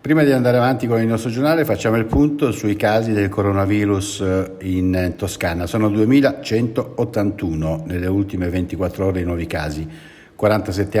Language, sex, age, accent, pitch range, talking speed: Italian, male, 60-79, native, 95-125 Hz, 145 wpm